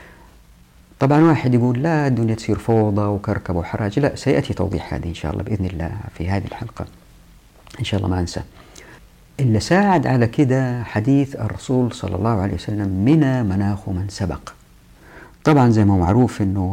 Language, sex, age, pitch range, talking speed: Arabic, female, 50-69, 95-115 Hz, 165 wpm